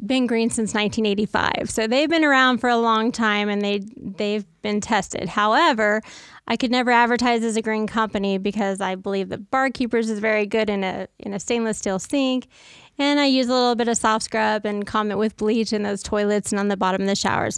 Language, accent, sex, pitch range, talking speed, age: English, American, female, 210-245 Hz, 230 wpm, 20-39